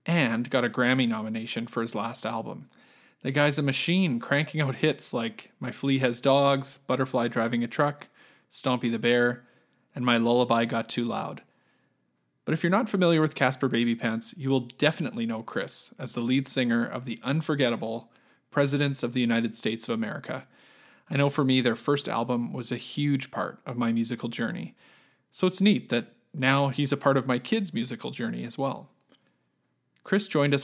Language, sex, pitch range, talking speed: English, male, 120-155 Hz, 185 wpm